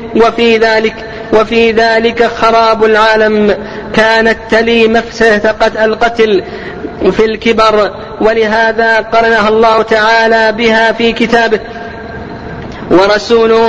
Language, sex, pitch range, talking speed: Arabic, female, 215-225 Hz, 90 wpm